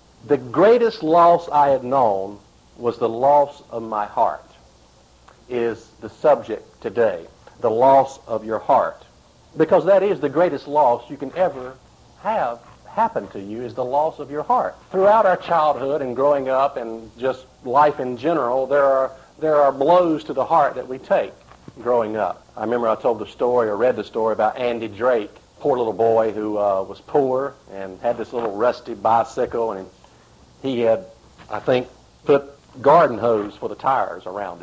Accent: American